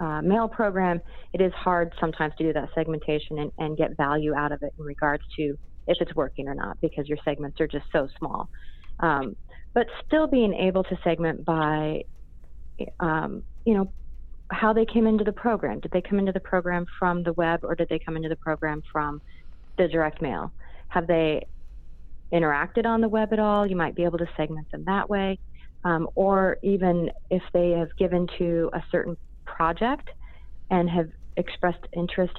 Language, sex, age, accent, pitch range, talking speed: English, female, 30-49, American, 155-185 Hz, 190 wpm